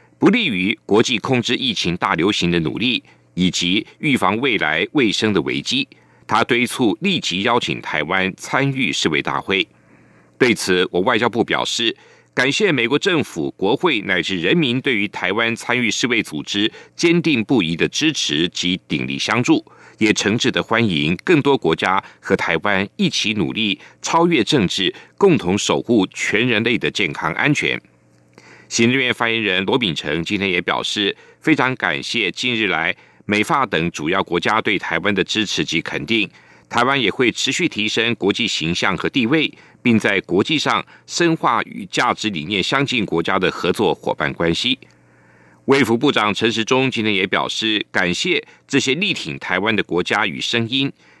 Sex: male